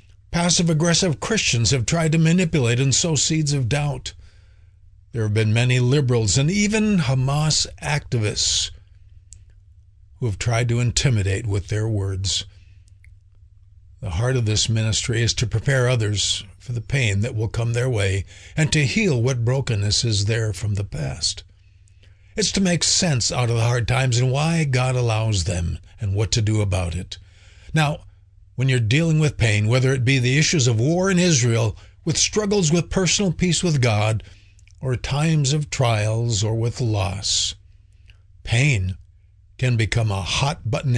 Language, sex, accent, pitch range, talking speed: English, male, American, 95-130 Hz, 160 wpm